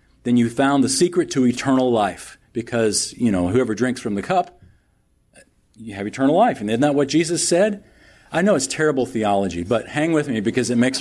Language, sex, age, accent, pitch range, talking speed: English, male, 40-59, American, 115-145 Hz, 205 wpm